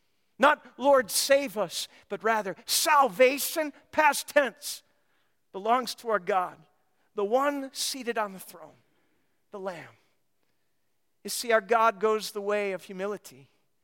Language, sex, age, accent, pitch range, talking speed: English, male, 50-69, American, 160-200 Hz, 130 wpm